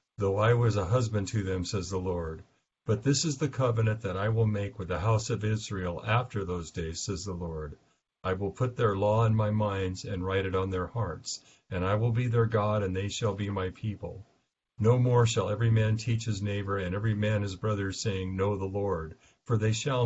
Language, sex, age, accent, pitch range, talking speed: English, male, 50-69, American, 95-115 Hz, 225 wpm